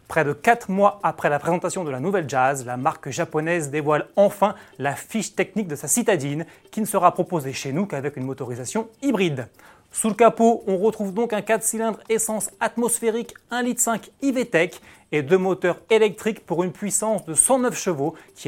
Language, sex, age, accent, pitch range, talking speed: French, male, 30-49, French, 150-215 Hz, 185 wpm